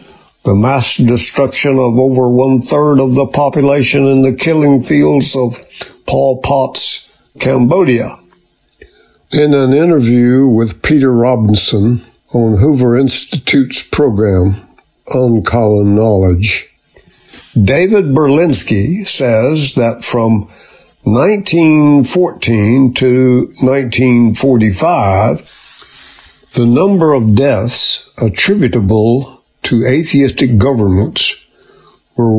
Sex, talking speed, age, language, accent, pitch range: male, 90 wpm, 60-79, English, American, 110-140 Hz